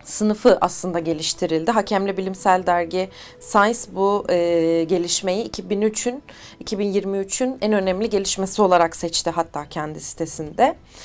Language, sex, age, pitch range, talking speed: Turkish, female, 30-49, 185-235 Hz, 110 wpm